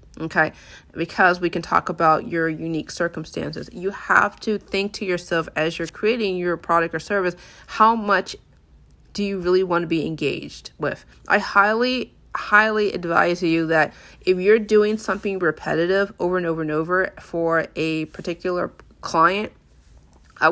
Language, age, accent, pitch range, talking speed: English, 30-49, American, 165-200 Hz, 155 wpm